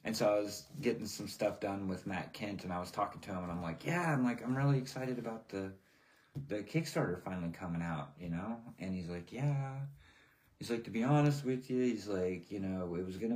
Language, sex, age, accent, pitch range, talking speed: English, male, 30-49, American, 95-135 Hz, 240 wpm